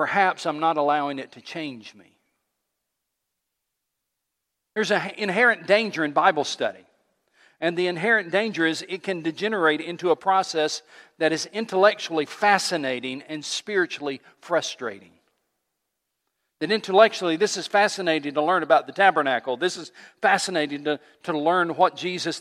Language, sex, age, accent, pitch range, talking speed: English, male, 50-69, American, 150-190 Hz, 135 wpm